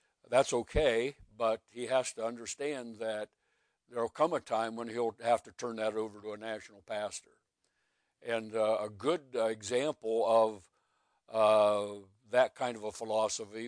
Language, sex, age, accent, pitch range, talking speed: English, male, 60-79, American, 105-120 Hz, 160 wpm